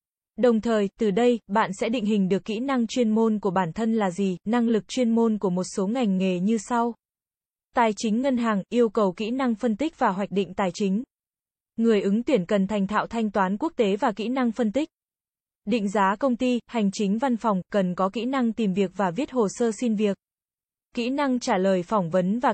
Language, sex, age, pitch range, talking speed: Vietnamese, female, 20-39, 200-245 Hz, 230 wpm